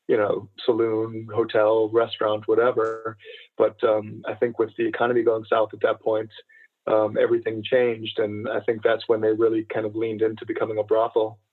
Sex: male